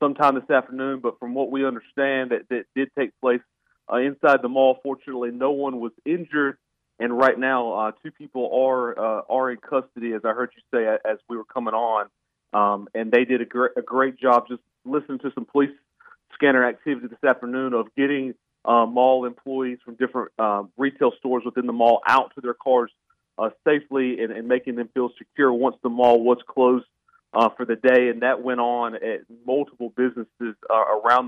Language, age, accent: English, 40-59, American